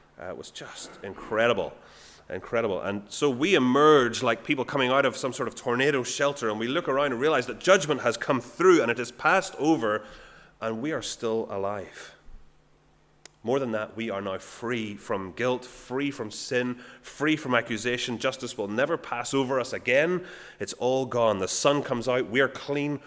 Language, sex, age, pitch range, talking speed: English, male, 30-49, 110-145 Hz, 190 wpm